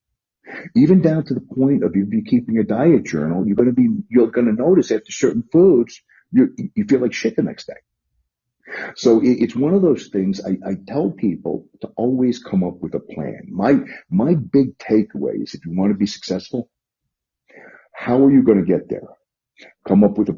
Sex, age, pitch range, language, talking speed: male, 50-69, 90-135 Hz, English, 195 wpm